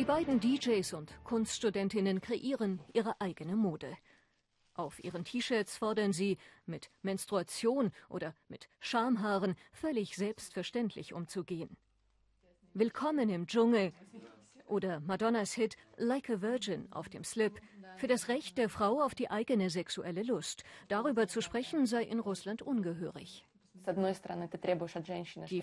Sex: female